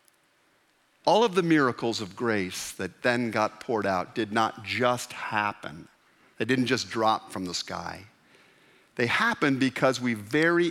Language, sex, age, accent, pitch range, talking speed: English, male, 50-69, American, 105-140 Hz, 150 wpm